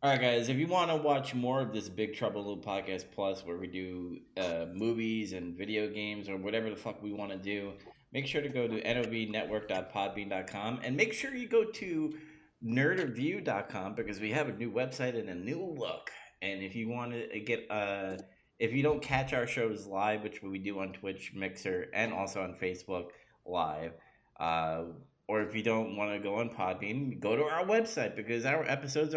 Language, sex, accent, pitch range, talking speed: English, male, American, 95-130 Hz, 200 wpm